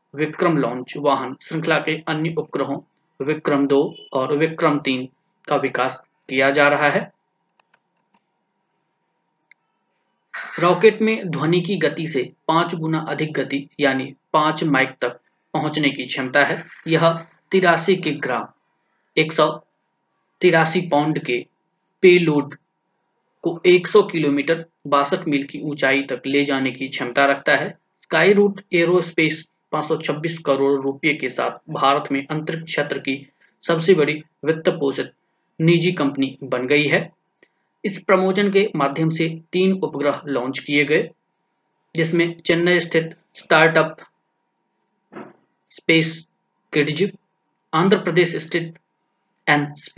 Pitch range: 145-185 Hz